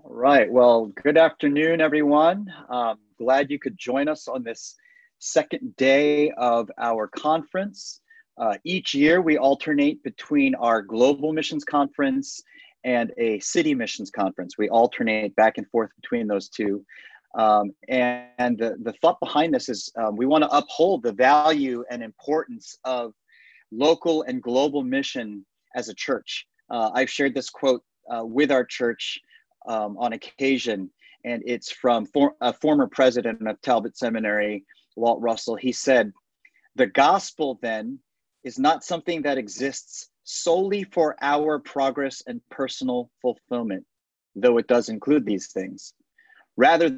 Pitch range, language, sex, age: 115-155 Hz, English, male, 30-49